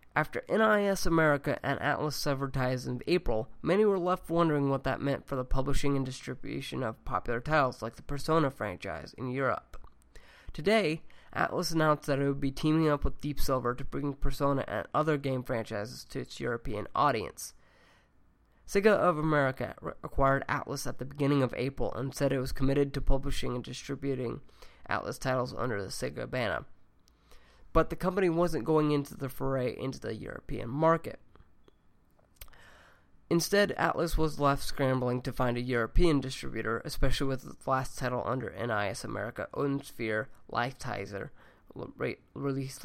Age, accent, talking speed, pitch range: 20-39, American, 155 wpm, 125-150 Hz